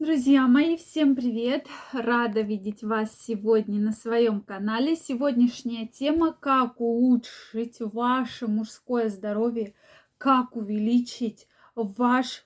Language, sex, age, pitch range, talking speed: Russian, female, 20-39, 220-265 Hz, 100 wpm